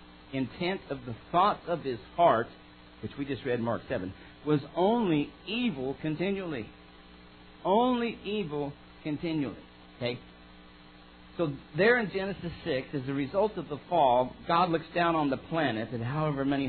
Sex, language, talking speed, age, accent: male, English, 145 wpm, 50-69, American